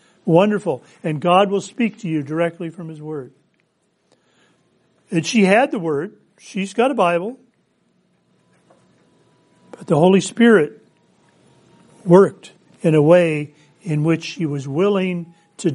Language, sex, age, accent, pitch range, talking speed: English, male, 50-69, American, 160-205 Hz, 130 wpm